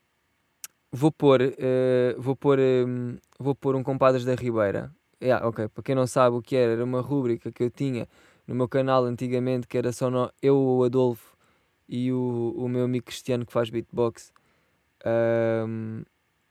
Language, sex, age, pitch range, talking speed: Portuguese, male, 20-39, 120-135 Hz, 175 wpm